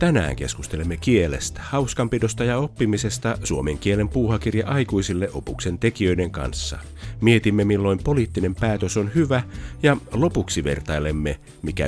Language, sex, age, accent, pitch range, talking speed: Finnish, male, 50-69, native, 85-115 Hz, 115 wpm